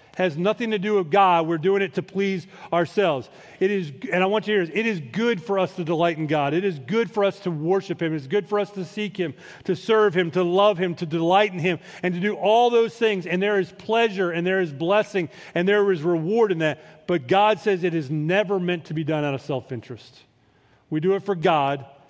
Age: 40-59